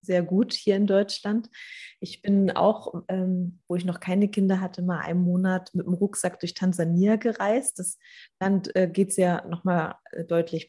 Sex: female